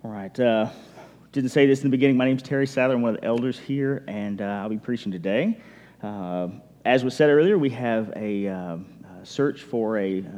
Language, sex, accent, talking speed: English, male, American, 220 wpm